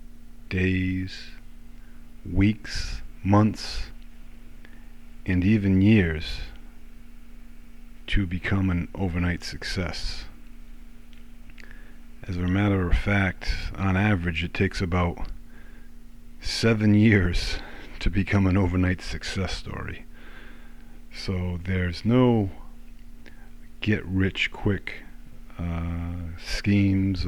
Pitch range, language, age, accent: 85-115 Hz, English, 50-69, American